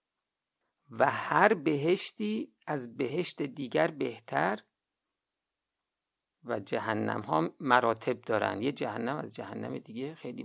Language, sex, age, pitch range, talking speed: Persian, male, 50-69, 110-165 Hz, 105 wpm